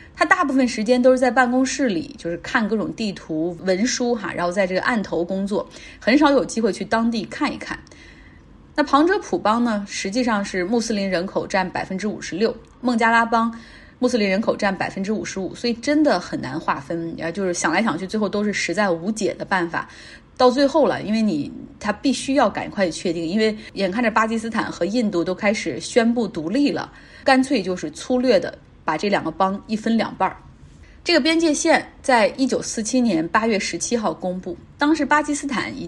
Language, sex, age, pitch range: Chinese, female, 30-49, 185-250 Hz